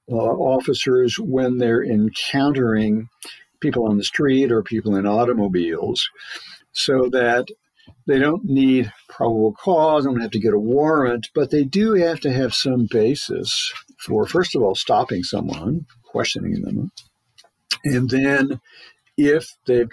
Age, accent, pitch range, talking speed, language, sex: 60-79, American, 110-140 Hz, 135 wpm, English, male